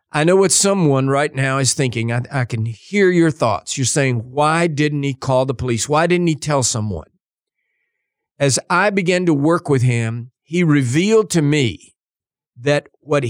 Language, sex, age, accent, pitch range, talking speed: English, male, 50-69, American, 125-170 Hz, 180 wpm